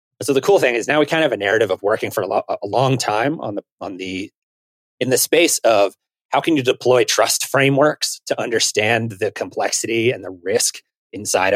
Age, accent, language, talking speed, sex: 30-49, American, English, 220 wpm, male